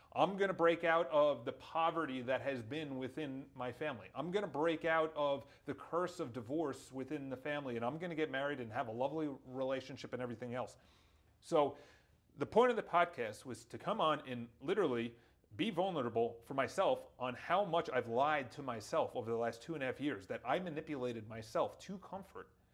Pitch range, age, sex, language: 120-165 Hz, 30-49, male, English